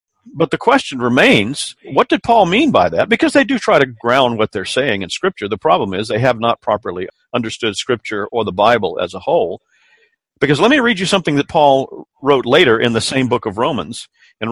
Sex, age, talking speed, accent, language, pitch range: male, 50-69, 220 wpm, American, English, 115-150 Hz